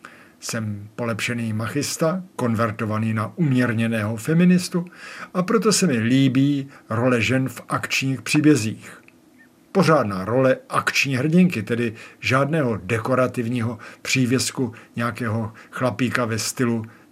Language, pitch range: Czech, 115-145 Hz